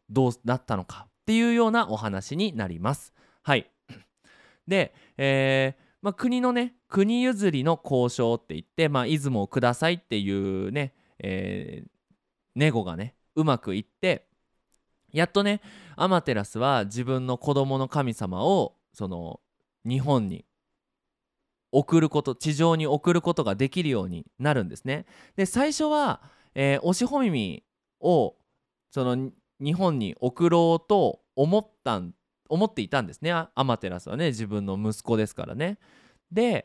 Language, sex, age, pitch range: Japanese, male, 20-39, 125-200 Hz